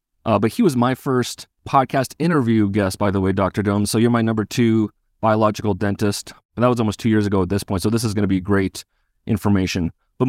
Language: English